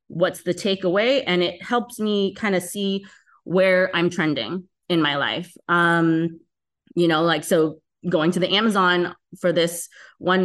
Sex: female